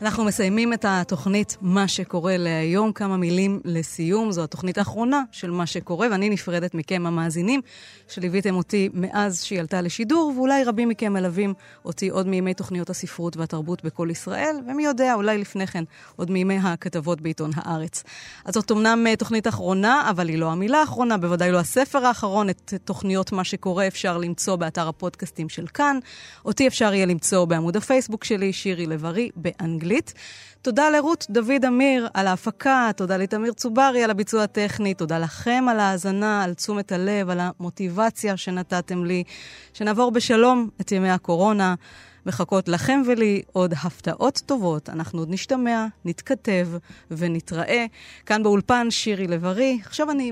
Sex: female